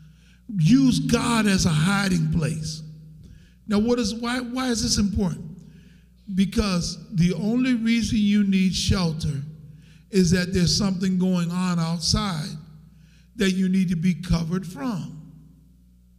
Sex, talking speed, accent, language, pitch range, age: male, 130 wpm, American, English, 170-225 Hz, 50-69